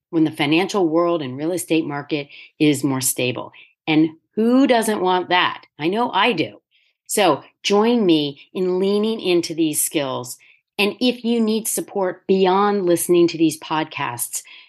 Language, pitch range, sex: English, 155-185 Hz, female